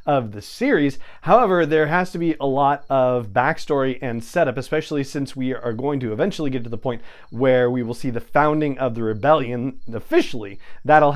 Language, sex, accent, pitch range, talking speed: English, male, American, 125-155 Hz, 195 wpm